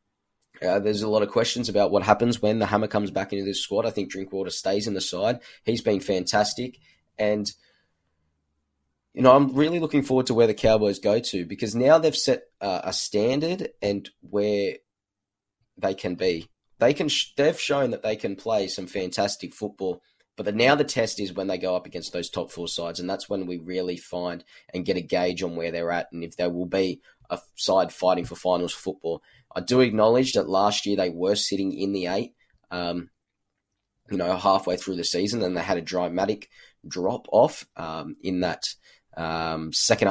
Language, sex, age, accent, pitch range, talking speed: English, male, 20-39, Australian, 90-105 Hz, 205 wpm